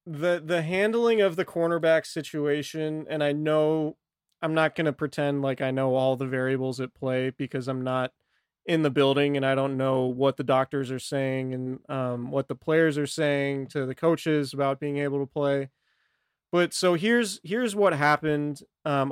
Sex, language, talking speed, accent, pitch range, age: male, English, 190 wpm, American, 135-160 Hz, 30-49